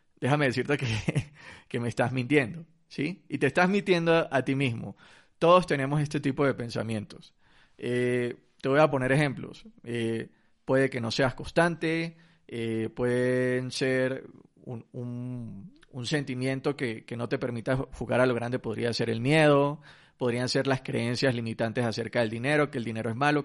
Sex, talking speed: male, 170 wpm